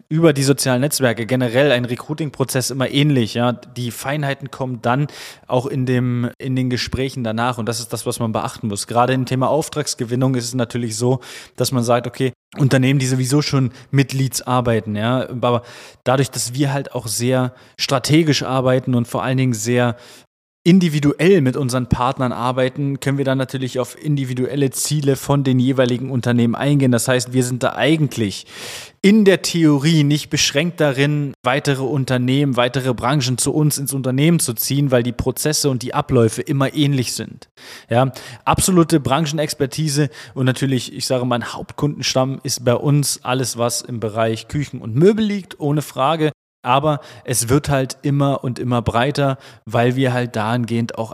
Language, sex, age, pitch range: German, male, 20-39, 125-145 Hz